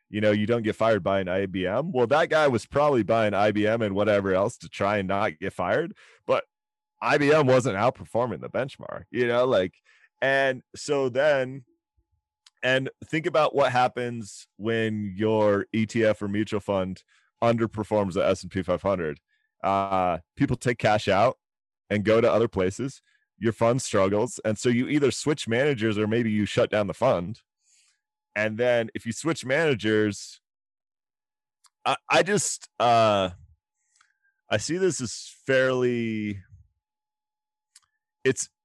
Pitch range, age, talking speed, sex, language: 100-130 Hz, 30-49, 145 wpm, male, English